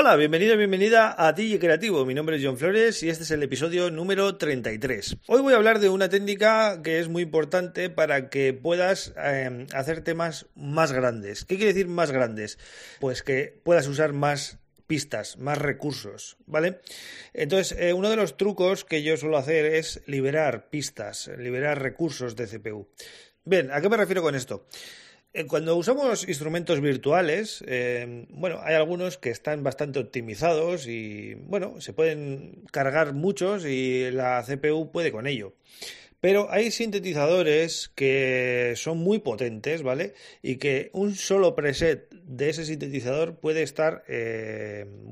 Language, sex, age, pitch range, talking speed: Spanish, male, 30-49, 130-180 Hz, 160 wpm